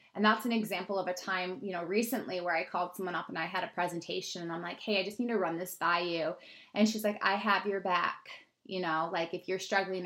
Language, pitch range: English, 175-210 Hz